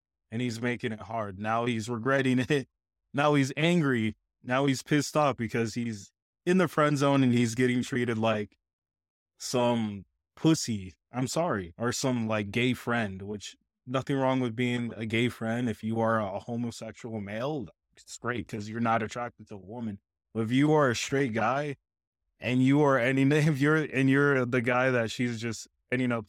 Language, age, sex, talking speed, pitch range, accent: English, 20-39, male, 185 wpm, 110-145 Hz, American